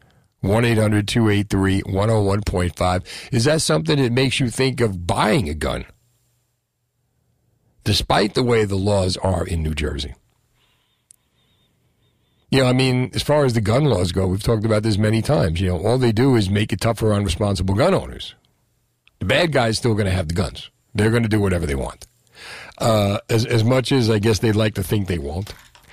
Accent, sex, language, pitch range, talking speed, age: American, male, English, 95-120 Hz, 190 wpm, 50-69